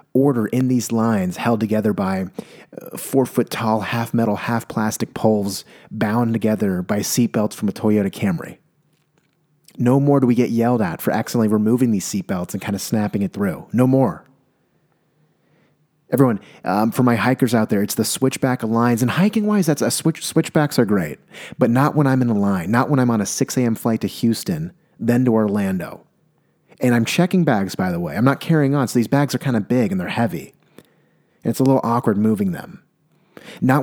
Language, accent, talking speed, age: English, American, 200 wpm, 30-49